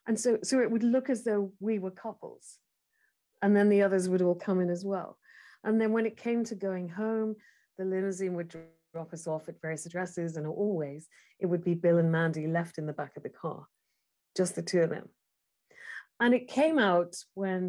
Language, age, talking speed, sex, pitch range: English, 40-59, 215 wpm, female, 175-225 Hz